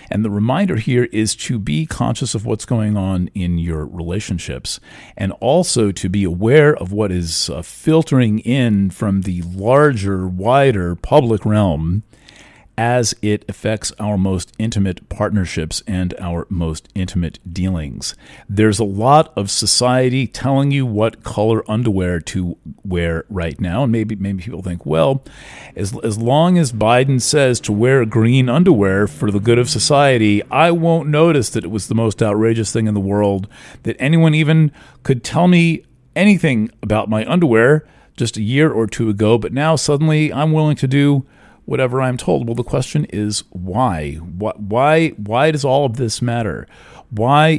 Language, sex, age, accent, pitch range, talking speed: English, male, 40-59, American, 95-130 Hz, 165 wpm